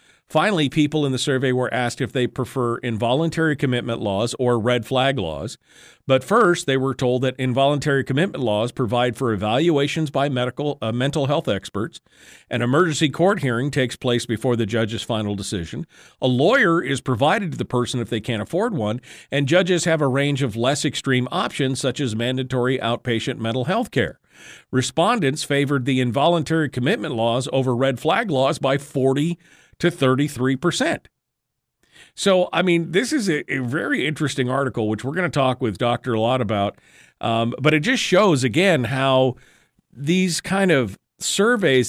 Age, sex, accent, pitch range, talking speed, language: 50-69, male, American, 125-165 Hz, 170 wpm, English